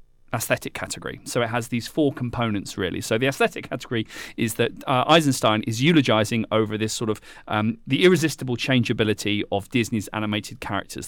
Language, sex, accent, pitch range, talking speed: English, male, British, 105-130 Hz, 170 wpm